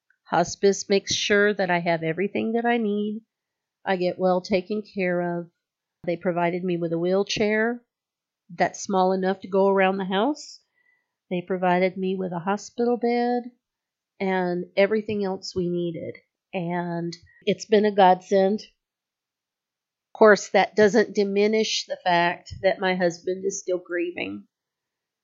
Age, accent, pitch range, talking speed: 40-59, American, 180-215 Hz, 145 wpm